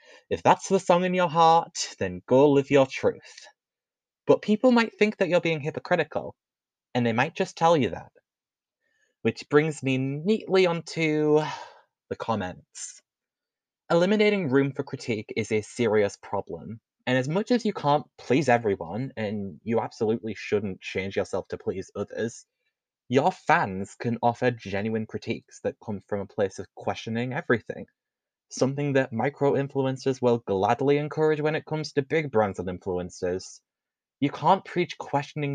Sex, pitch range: male, 110-165 Hz